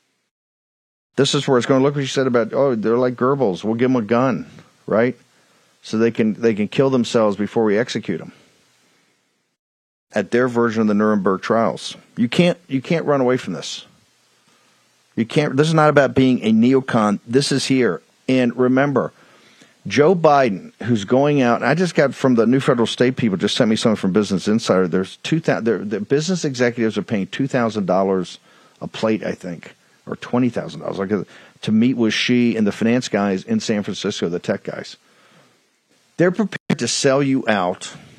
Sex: male